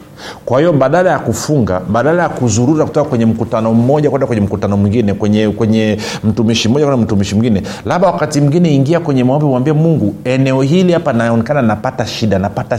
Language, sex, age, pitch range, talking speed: Swahili, male, 50-69, 115-150 Hz, 180 wpm